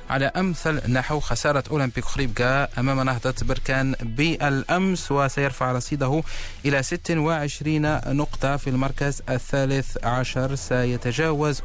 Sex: male